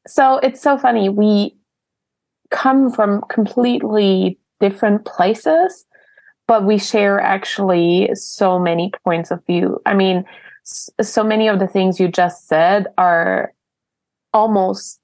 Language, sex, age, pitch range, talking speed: English, female, 20-39, 185-220 Hz, 125 wpm